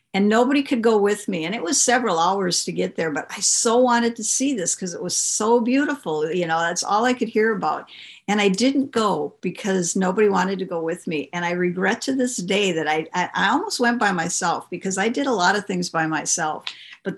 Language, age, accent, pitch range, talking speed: English, 50-69, American, 180-225 Hz, 240 wpm